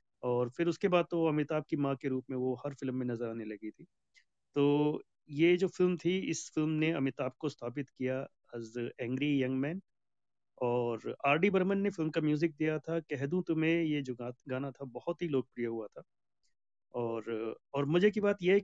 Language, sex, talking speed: Hindi, male, 205 wpm